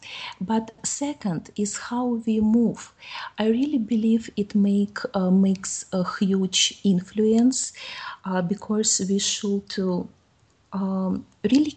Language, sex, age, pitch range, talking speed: English, female, 30-49, 175-210 Hz, 110 wpm